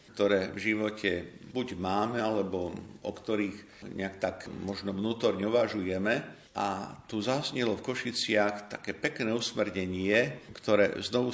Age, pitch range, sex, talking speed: 50-69, 95-110 Hz, male, 115 wpm